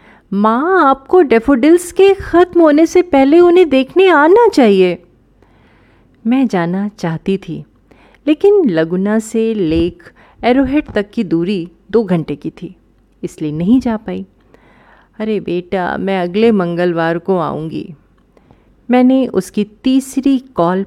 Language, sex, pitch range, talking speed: Hindi, female, 175-265 Hz, 125 wpm